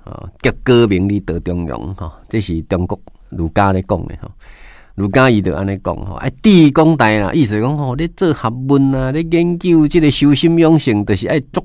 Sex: male